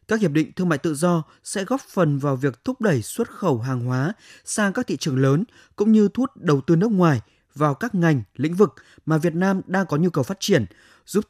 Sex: male